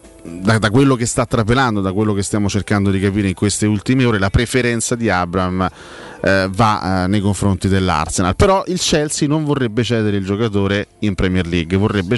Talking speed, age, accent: 185 wpm, 30-49, native